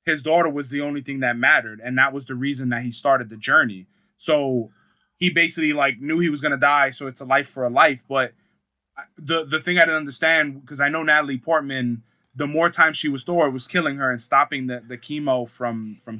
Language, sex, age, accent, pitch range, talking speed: English, male, 20-39, American, 125-150 Hz, 230 wpm